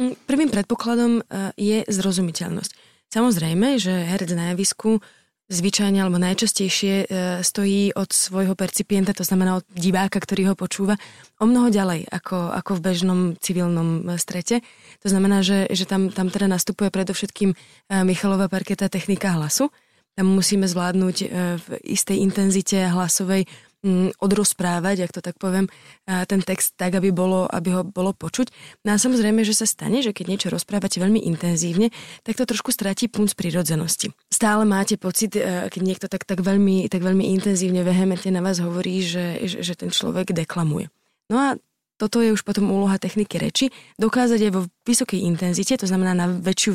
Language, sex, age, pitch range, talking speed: Slovak, female, 20-39, 185-205 Hz, 160 wpm